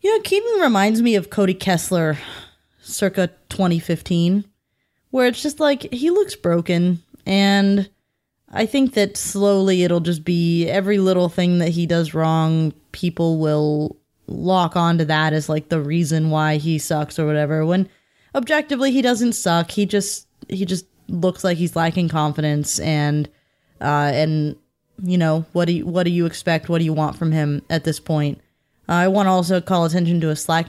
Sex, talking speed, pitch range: female, 175 wpm, 155-190 Hz